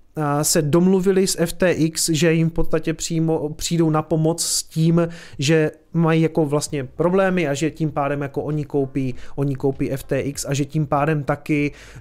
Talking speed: 170 wpm